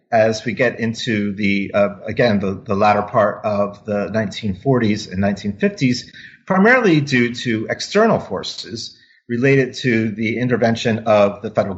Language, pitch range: English, 100-120 Hz